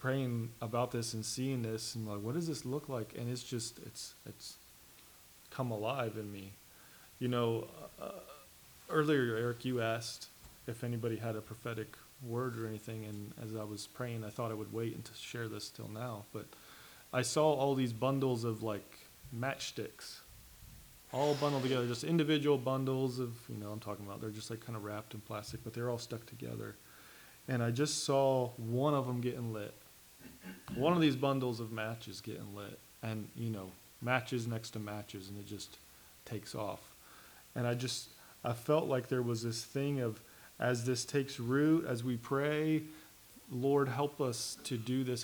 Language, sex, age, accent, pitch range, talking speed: English, male, 30-49, American, 110-130 Hz, 185 wpm